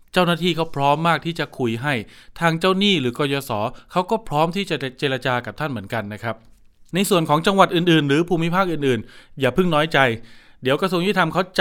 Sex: male